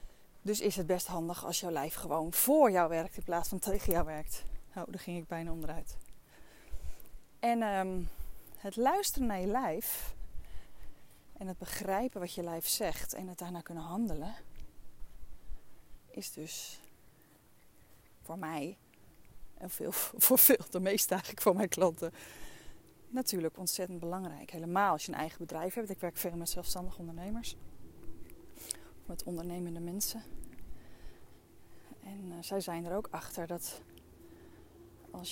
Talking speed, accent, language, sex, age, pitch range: 145 wpm, Dutch, Dutch, female, 20-39, 170-235 Hz